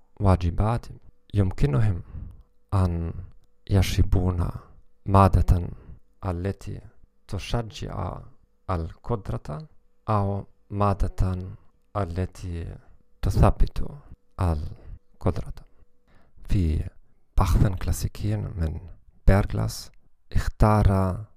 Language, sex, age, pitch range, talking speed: English, male, 40-59, 90-105 Hz, 50 wpm